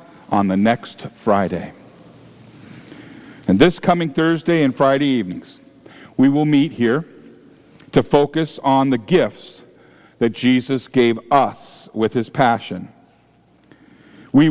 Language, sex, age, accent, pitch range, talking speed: English, male, 50-69, American, 125-160 Hz, 115 wpm